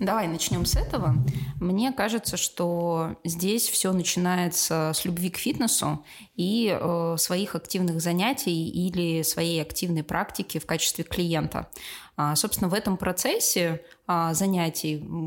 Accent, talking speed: native, 120 wpm